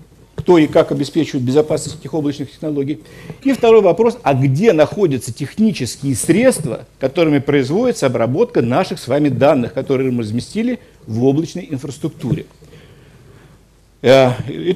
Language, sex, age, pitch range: Russian, male, 50-69, 130-165 Hz